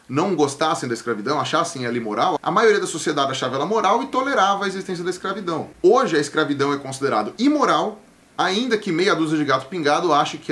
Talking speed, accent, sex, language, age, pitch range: 200 wpm, Brazilian, male, English, 20-39, 135-215 Hz